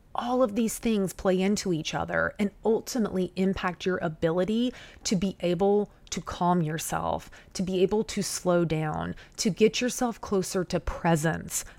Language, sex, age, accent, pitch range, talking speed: English, female, 30-49, American, 175-220 Hz, 160 wpm